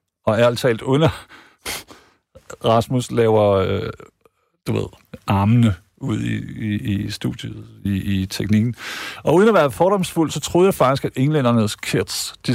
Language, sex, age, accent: Danish, male, 50-69, native